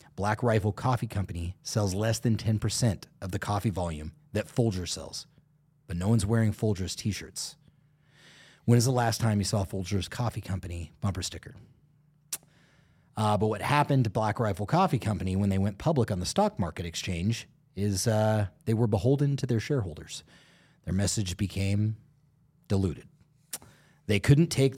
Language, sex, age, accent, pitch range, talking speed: English, male, 30-49, American, 100-130 Hz, 160 wpm